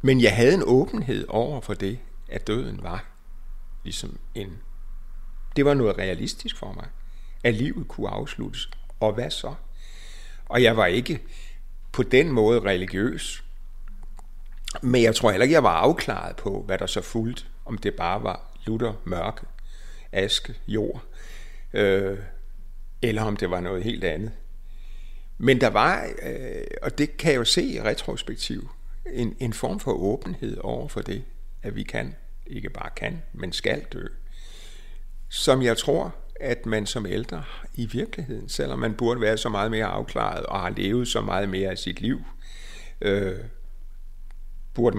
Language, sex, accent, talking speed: Danish, male, native, 155 wpm